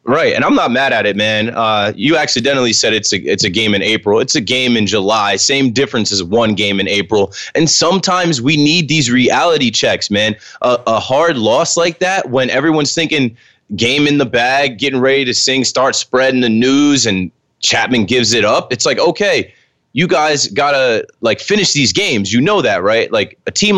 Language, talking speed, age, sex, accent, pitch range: English, 210 wpm, 20-39, male, American, 115-160 Hz